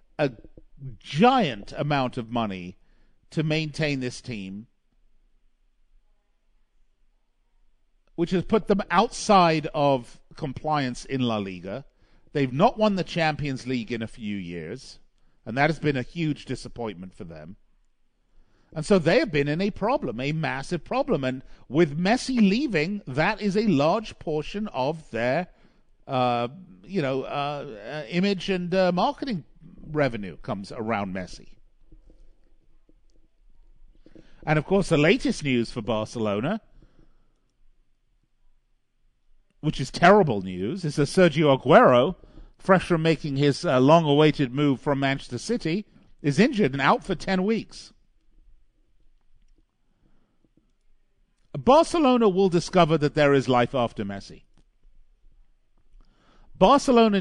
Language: English